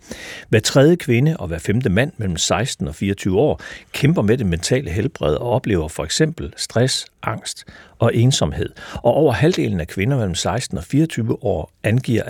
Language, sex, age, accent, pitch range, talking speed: Danish, male, 60-79, native, 95-130 Hz, 175 wpm